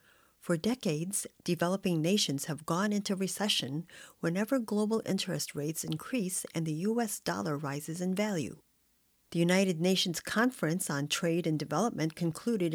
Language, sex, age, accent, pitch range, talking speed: English, female, 40-59, American, 155-195 Hz, 135 wpm